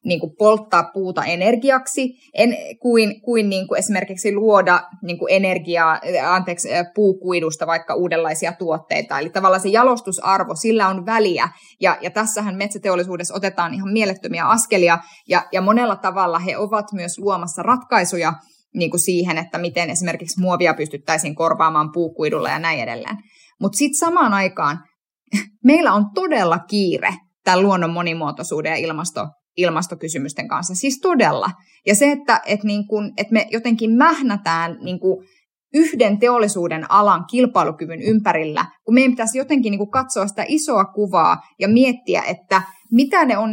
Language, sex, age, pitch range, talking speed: Finnish, female, 20-39, 175-225 Hz, 140 wpm